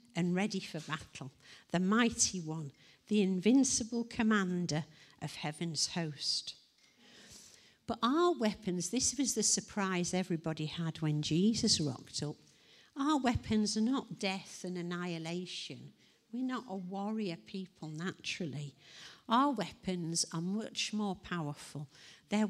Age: 50-69